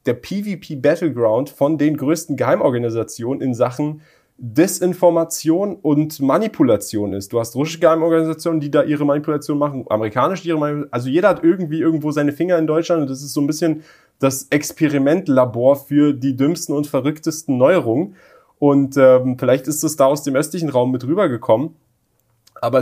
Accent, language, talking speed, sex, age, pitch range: German, German, 160 wpm, male, 30-49, 120-155 Hz